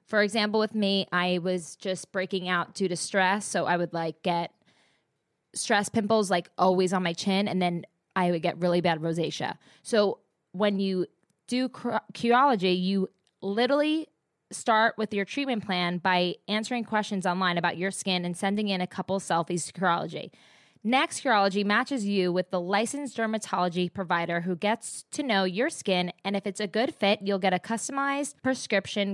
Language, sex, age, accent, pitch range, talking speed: English, female, 20-39, American, 175-220 Hz, 175 wpm